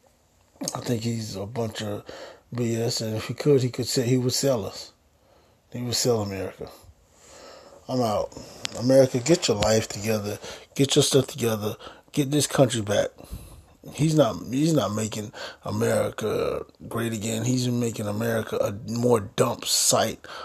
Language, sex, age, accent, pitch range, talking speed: English, male, 20-39, American, 110-125 Hz, 155 wpm